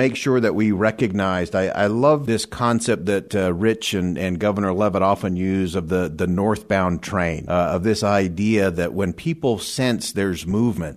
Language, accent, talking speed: English, American, 185 wpm